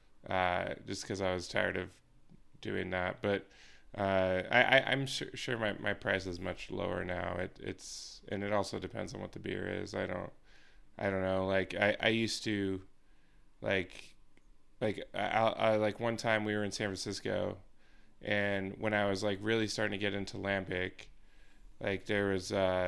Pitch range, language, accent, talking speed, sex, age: 95-110 Hz, English, American, 185 wpm, male, 20-39